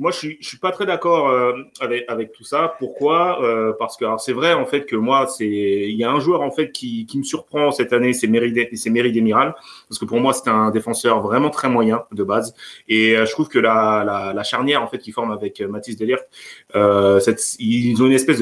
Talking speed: 240 wpm